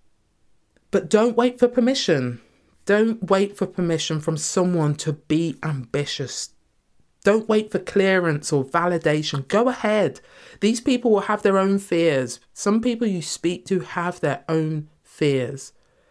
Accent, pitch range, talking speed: British, 140-190 Hz, 140 wpm